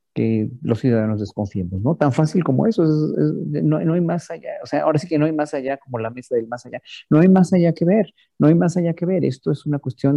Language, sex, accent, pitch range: Spanish, male, Mexican, 115-145 Hz